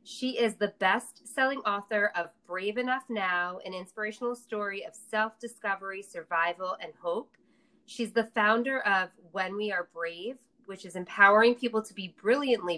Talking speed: 150 wpm